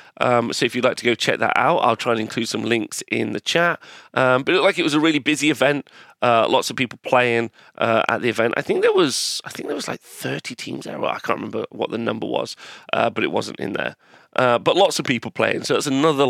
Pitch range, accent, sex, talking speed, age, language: 115-145 Hz, British, male, 270 wpm, 30-49, English